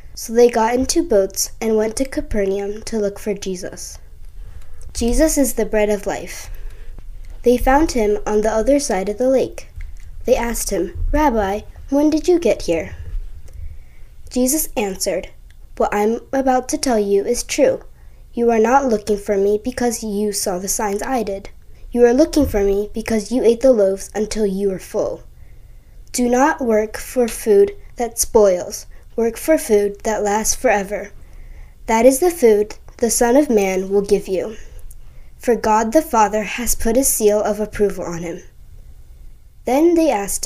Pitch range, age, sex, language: 200-255 Hz, 10-29, female, Korean